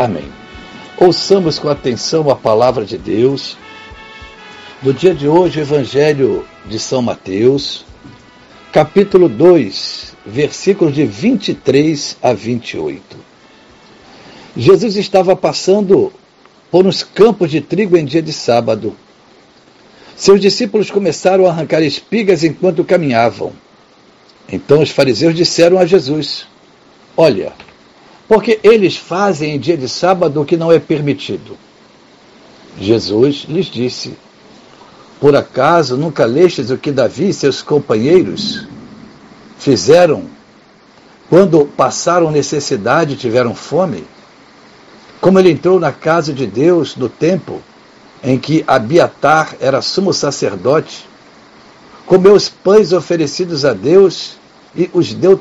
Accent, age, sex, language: Brazilian, 60-79, male, Portuguese